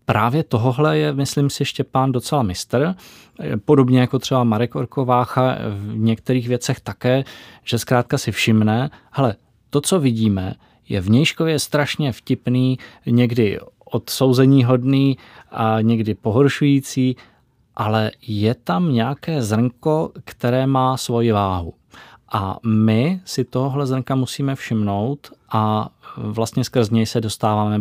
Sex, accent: male, native